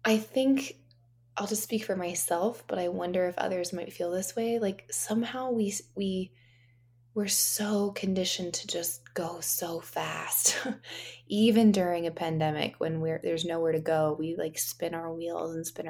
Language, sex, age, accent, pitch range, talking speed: English, female, 20-39, American, 160-215 Hz, 170 wpm